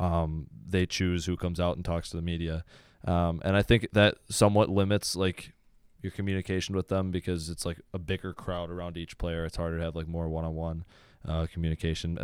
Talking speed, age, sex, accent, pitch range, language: 195 wpm, 20-39, male, American, 85-100 Hz, English